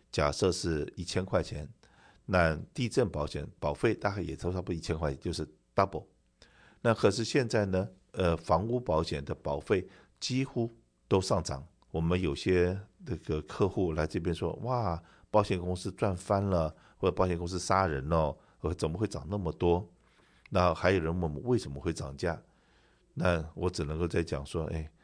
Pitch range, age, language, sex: 80-95 Hz, 50-69, Chinese, male